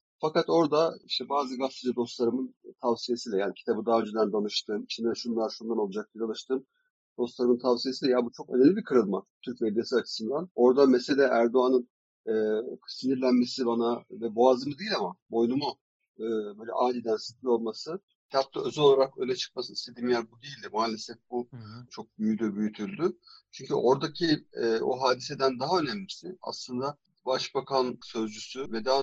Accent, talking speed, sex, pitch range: native, 145 wpm, male, 115-135 Hz